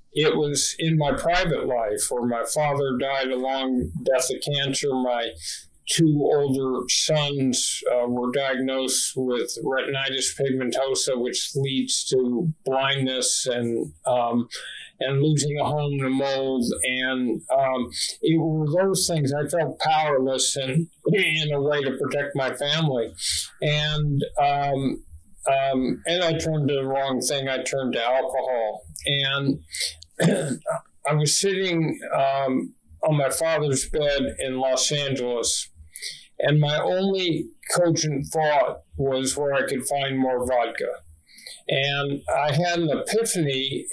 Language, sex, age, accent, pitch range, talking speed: English, male, 50-69, American, 130-150 Hz, 135 wpm